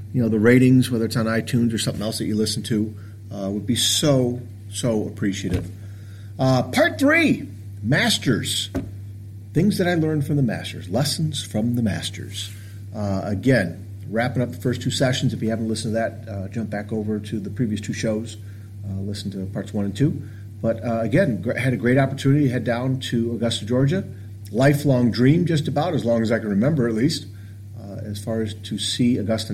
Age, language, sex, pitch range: 50-69, English, male, 100-120 Hz